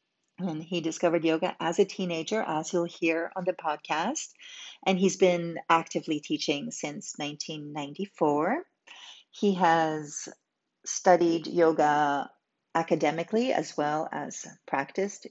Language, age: Greek, 40-59